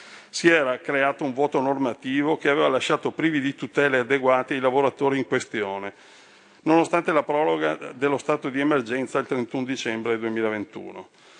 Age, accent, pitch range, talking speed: 50-69, native, 125-150 Hz, 145 wpm